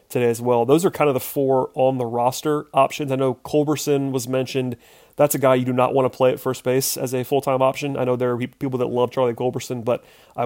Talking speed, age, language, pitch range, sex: 260 wpm, 30-49, English, 120-135 Hz, male